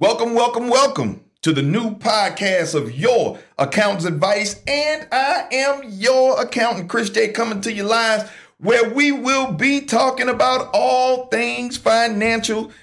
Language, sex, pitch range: English, male, 175-255 Hz